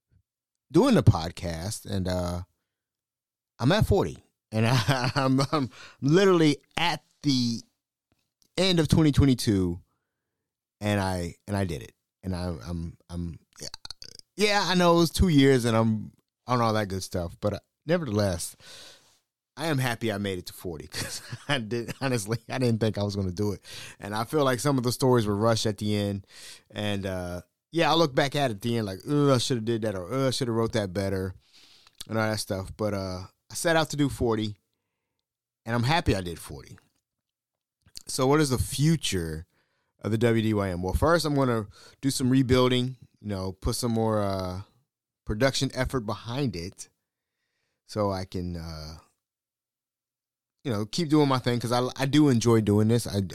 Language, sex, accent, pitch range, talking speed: English, male, American, 95-130 Hz, 185 wpm